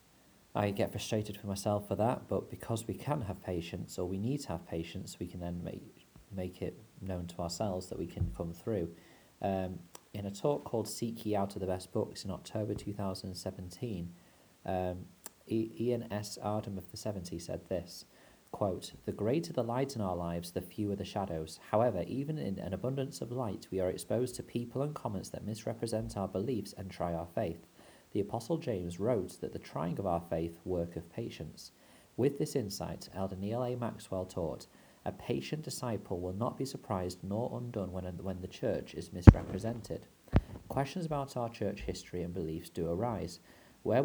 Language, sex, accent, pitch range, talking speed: English, male, British, 90-115 Hz, 190 wpm